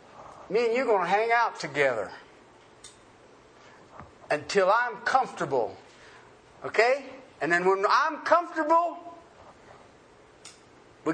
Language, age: English, 50-69